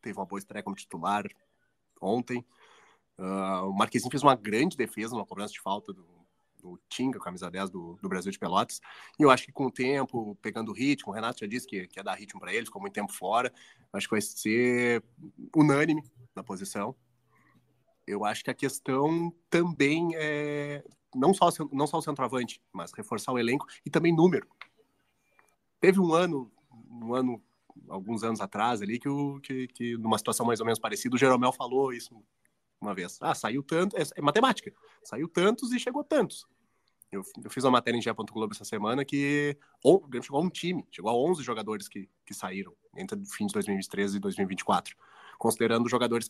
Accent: Brazilian